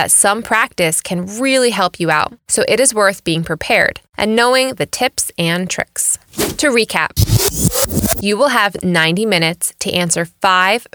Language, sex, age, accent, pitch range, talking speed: English, female, 20-39, American, 170-240 Hz, 160 wpm